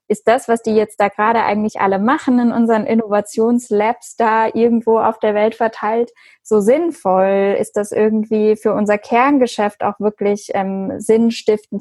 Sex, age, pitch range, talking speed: female, 10-29, 210-240 Hz, 160 wpm